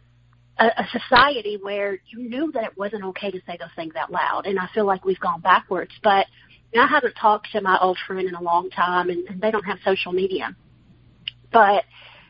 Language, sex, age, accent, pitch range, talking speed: English, female, 40-59, American, 185-225 Hz, 205 wpm